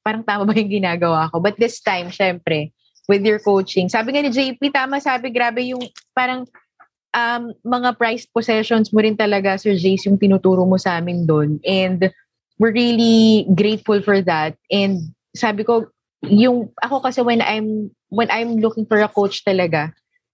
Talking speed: 170 wpm